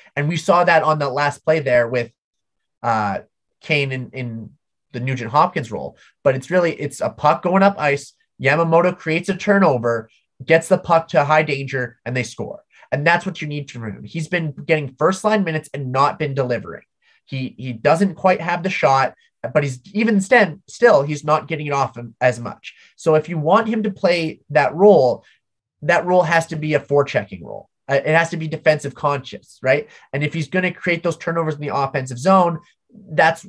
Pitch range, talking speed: 130-170 Hz, 200 wpm